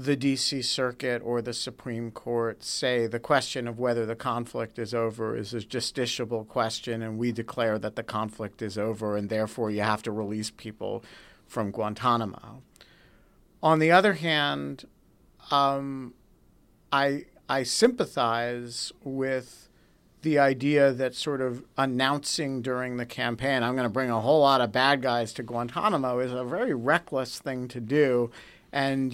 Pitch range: 120-145 Hz